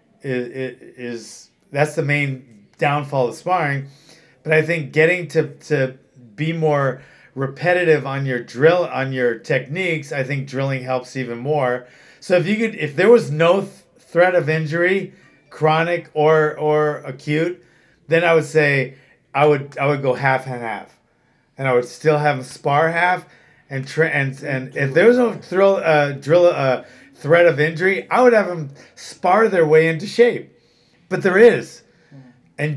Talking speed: 165 wpm